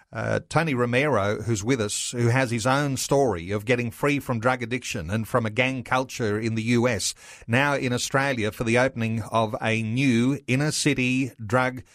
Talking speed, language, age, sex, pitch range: 180 wpm, English, 40-59, male, 115-135 Hz